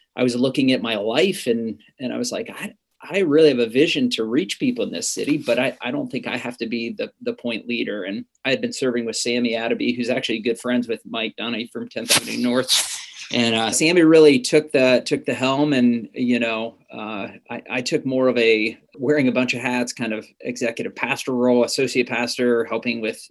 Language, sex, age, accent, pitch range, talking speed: English, male, 30-49, American, 115-130 Hz, 225 wpm